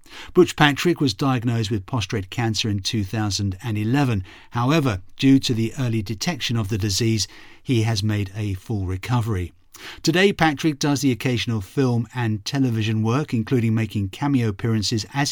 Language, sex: English, male